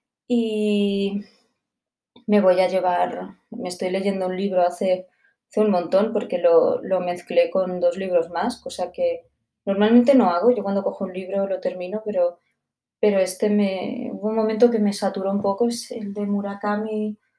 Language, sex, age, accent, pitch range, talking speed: Spanish, female, 20-39, Spanish, 190-225 Hz, 175 wpm